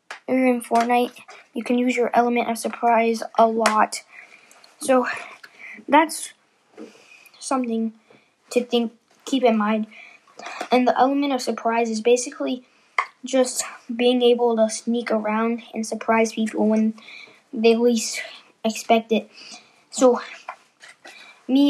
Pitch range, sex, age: 225-250 Hz, female, 10-29